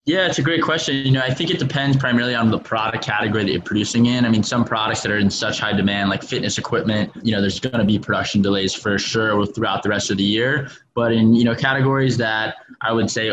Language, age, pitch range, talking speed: English, 20-39, 105-120 Hz, 260 wpm